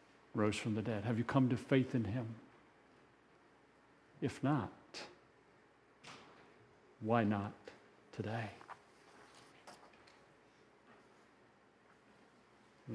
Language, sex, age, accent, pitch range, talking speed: English, male, 50-69, American, 120-155 Hz, 80 wpm